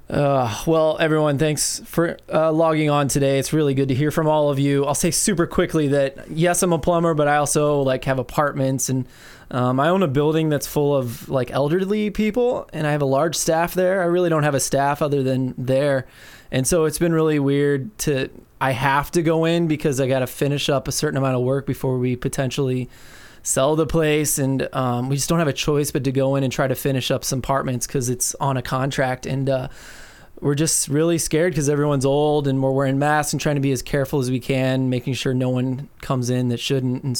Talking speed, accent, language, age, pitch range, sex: 235 wpm, American, English, 20-39, 130-155 Hz, male